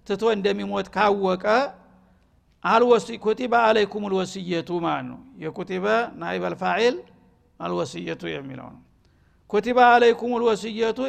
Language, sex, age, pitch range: Amharic, male, 60-79, 190-220 Hz